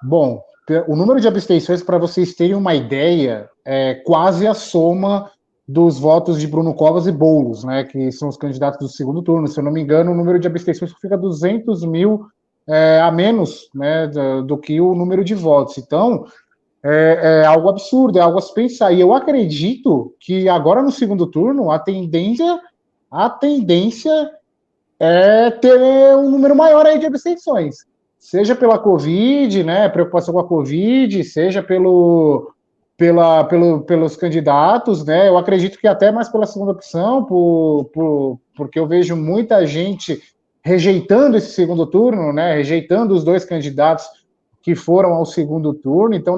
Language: Portuguese